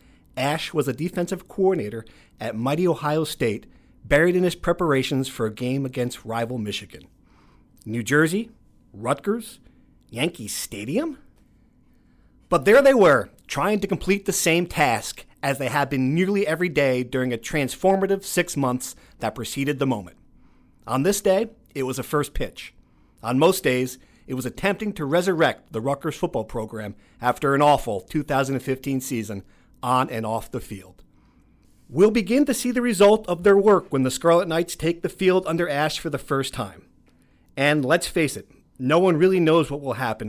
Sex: male